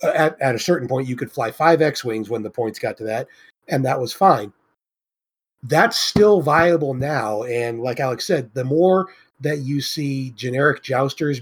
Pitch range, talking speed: 125-160 Hz, 190 wpm